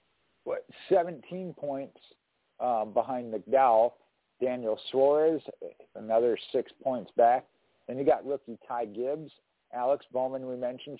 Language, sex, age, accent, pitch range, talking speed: English, male, 50-69, American, 120-155 Hz, 120 wpm